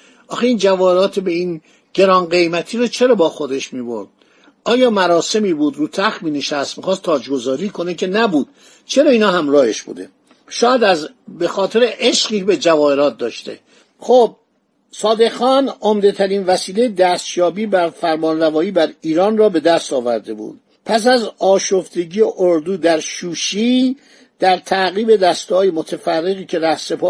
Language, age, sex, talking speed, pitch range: Persian, 50-69, male, 135 wpm, 175-240 Hz